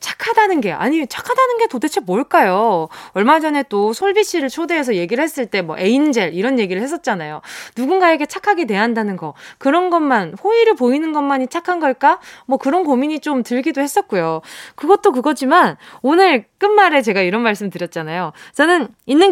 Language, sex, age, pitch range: Korean, female, 20-39, 220-360 Hz